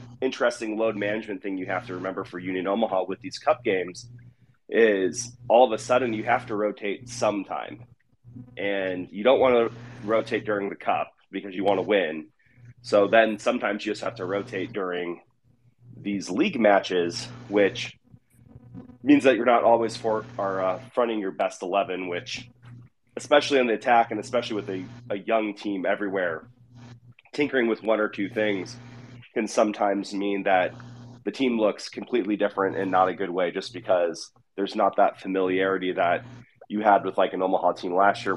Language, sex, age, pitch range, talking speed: English, male, 30-49, 100-120 Hz, 175 wpm